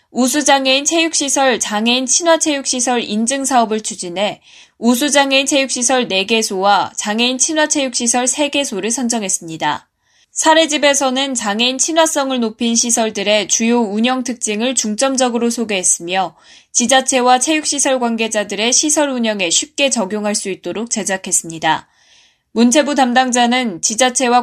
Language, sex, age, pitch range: Korean, female, 10-29, 210-270 Hz